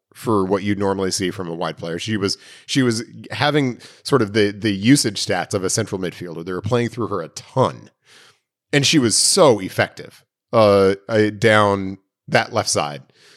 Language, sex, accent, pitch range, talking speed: English, male, American, 100-125 Hz, 185 wpm